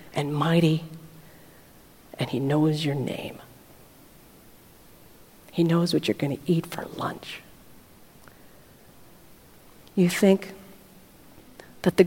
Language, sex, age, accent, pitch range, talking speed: English, female, 50-69, American, 160-190 Hz, 100 wpm